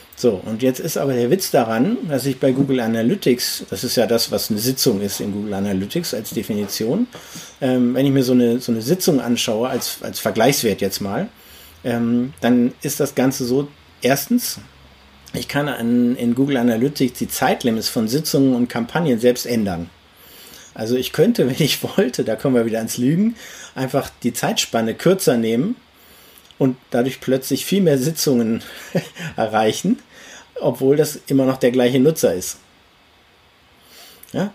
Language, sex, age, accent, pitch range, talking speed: German, male, 50-69, German, 115-145 Hz, 160 wpm